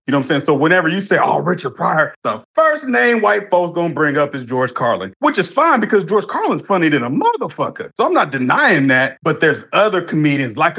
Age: 30-49